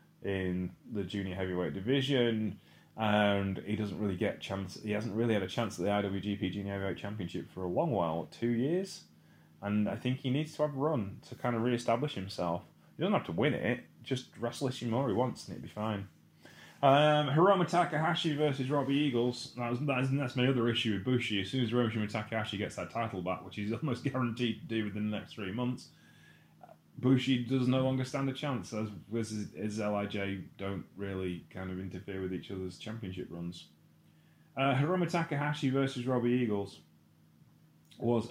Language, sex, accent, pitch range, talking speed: English, male, British, 100-125 Hz, 185 wpm